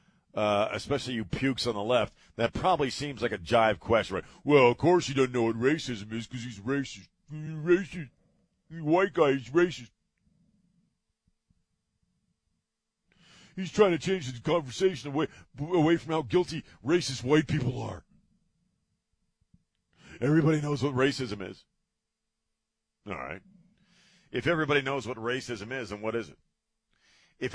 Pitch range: 125-175 Hz